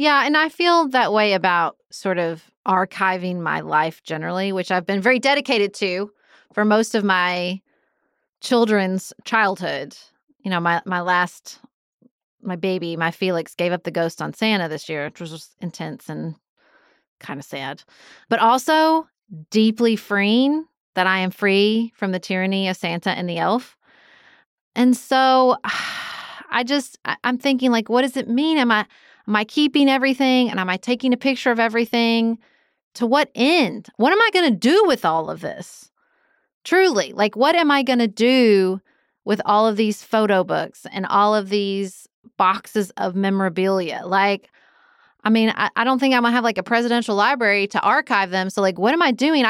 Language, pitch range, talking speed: English, 190-255 Hz, 180 wpm